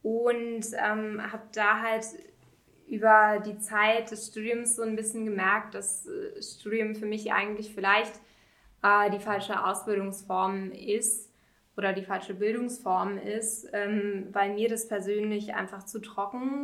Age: 10-29